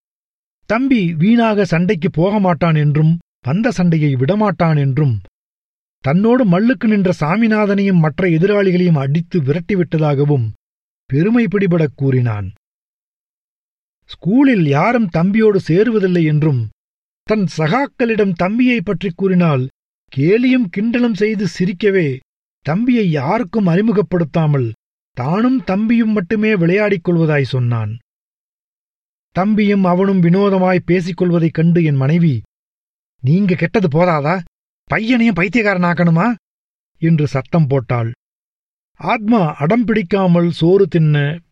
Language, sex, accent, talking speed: Tamil, male, native, 90 wpm